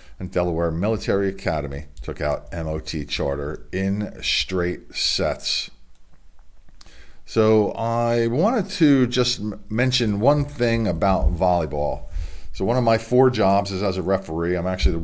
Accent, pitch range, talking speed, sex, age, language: American, 85-125 Hz, 135 wpm, male, 40-59, English